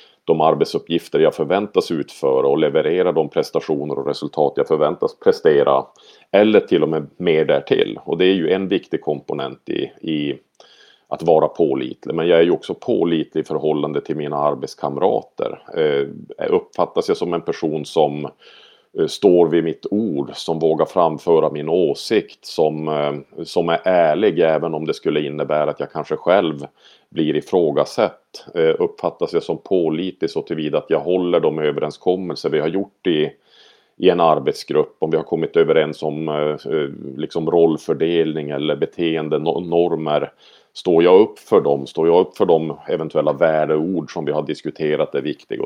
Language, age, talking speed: Swedish, 40-59, 160 wpm